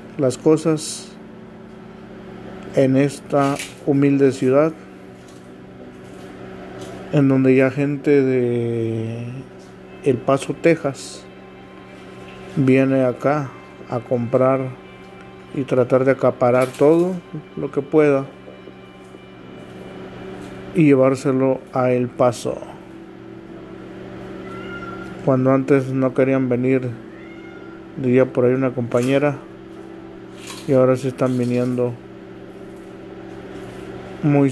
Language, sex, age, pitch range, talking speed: Spanish, male, 50-69, 115-140 Hz, 80 wpm